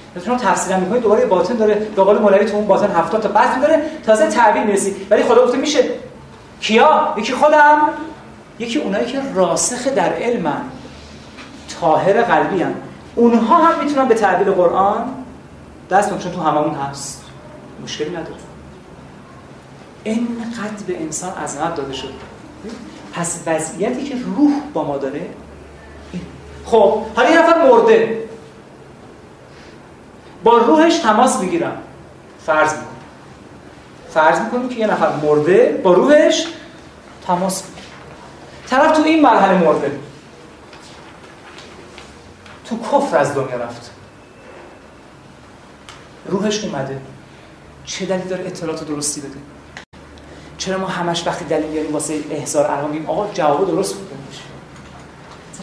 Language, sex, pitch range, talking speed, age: Persian, male, 155-245 Hz, 120 wpm, 30-49